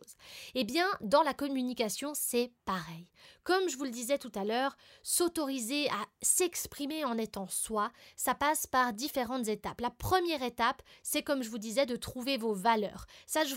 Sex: female